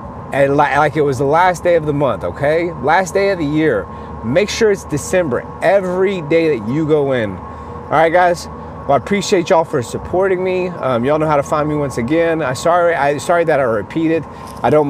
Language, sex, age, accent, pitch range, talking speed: English, male, 30-49, American, 115-150 Hz, 220 wpm